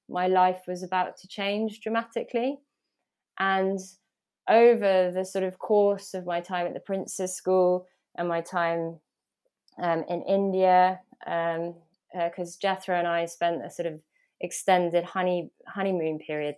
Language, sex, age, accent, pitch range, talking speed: English, female, 20-39, British, 170-195 Hz, 145 wpm